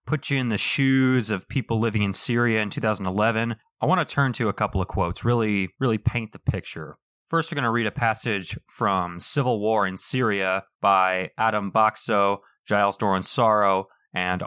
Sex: male